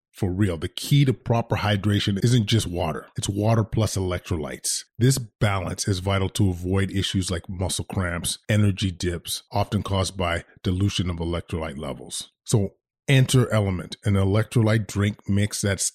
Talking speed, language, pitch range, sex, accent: 155 wpm, English, 95-115 Hz, male, American